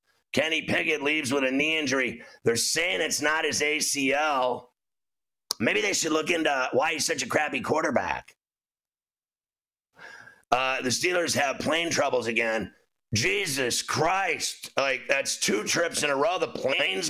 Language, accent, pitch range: English, American, 140-175 Hz